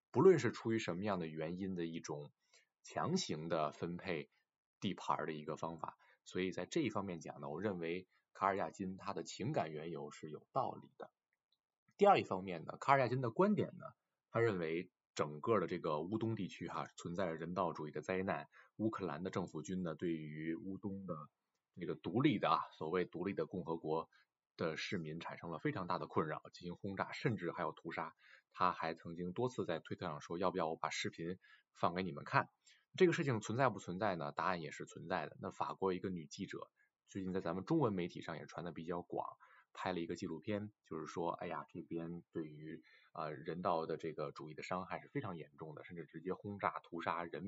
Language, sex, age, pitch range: Chinese, male, 20-39, 80-100 Hz